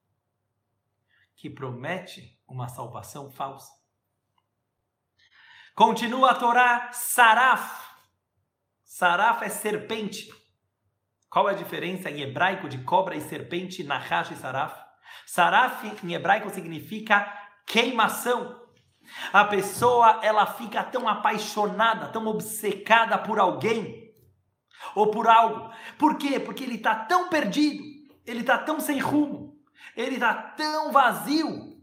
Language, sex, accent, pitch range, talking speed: Portuguese, male, Brazilian, 165-240 Hz, 105 wpm